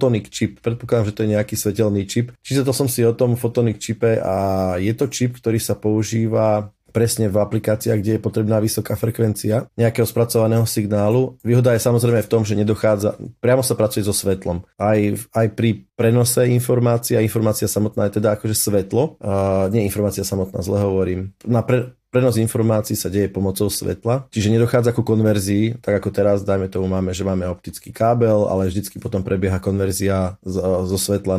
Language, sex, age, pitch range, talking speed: Slovak, male, 30-49, 95-115 Hz, 175 wpm